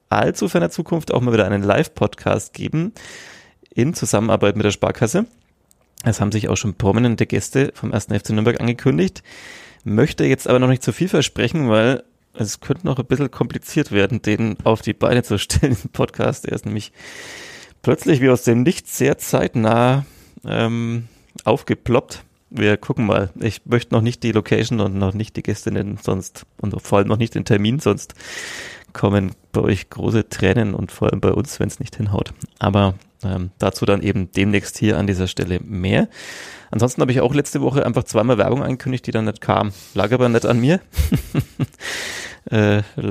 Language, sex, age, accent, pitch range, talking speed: German, male, 30-49, German, 100-125 Hz, 180 wpm